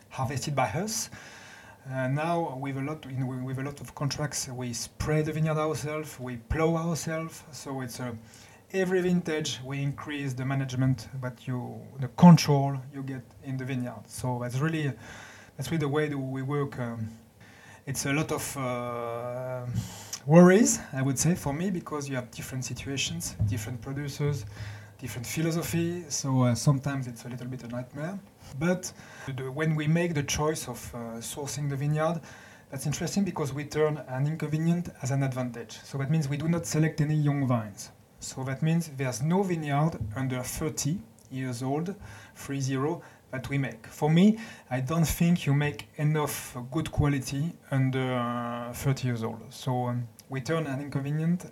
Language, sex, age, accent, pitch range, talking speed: Swedish, male, 30-49, French, 125-155 Hz, 175 wpm